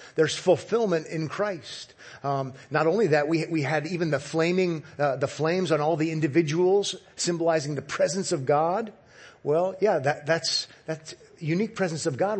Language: English